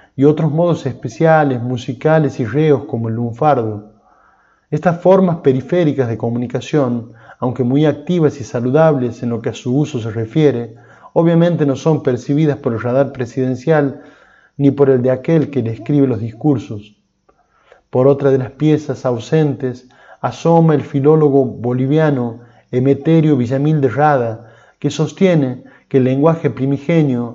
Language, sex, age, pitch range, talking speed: Spanish, male, 20-39, 120-150 Hz, 145 wpm